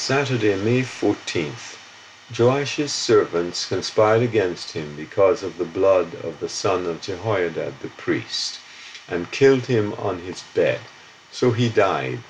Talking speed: 135 wpm